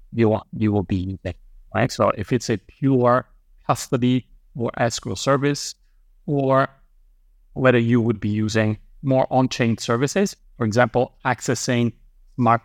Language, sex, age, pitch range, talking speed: Vietnamese, male, 30-49, 100-125 Hz, 130 wpm